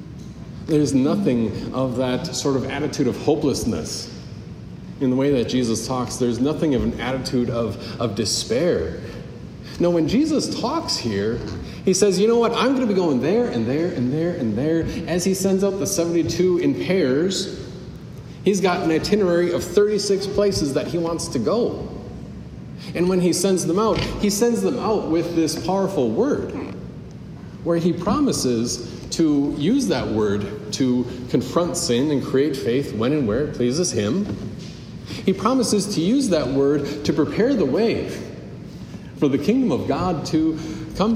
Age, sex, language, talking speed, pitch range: 40-59, male, English, 170 wpm, 130-190 Hz